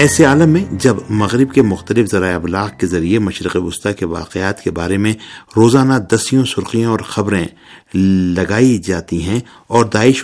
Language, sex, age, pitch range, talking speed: Urdu, male, 50-69, 95-115 Hz, 165 wpm